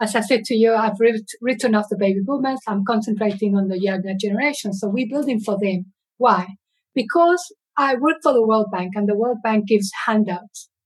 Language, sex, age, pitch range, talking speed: English, female, 50-69, 210-280 Hz, 200 wpm